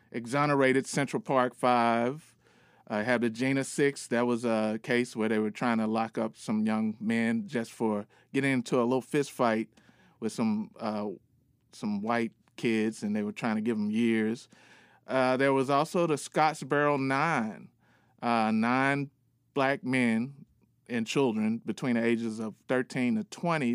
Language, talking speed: English, 165 wpm